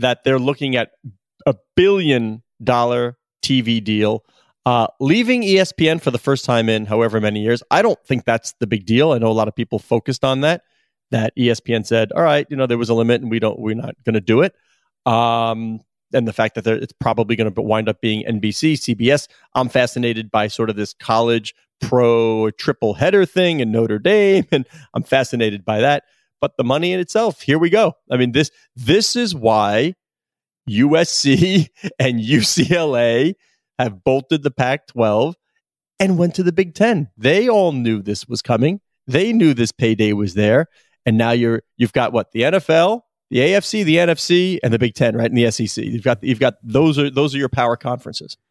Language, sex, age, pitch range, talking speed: English, male, 30-49, 115-150 Hz, 200 wpm